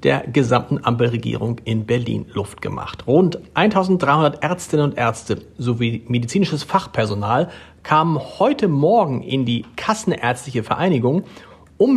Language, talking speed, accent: German, 115 wpm, German